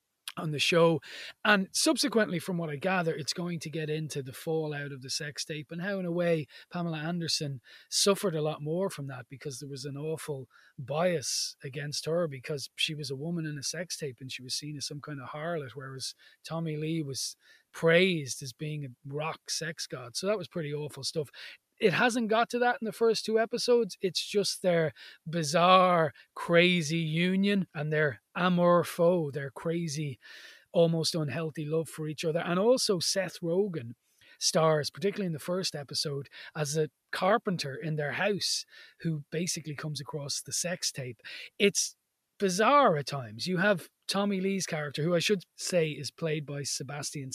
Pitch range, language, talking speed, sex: 145-180 Hz, English, 180 wpm, male